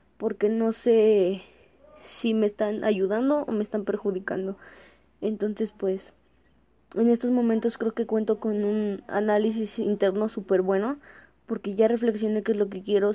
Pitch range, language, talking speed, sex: 205-230 Hz, Spanish, 150 wpm, female